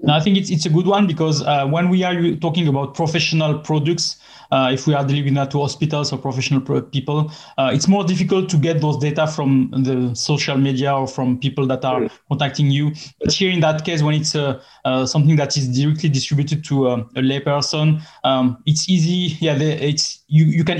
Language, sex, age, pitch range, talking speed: English, male, 20-39, 140-165 Hz, 215 wpm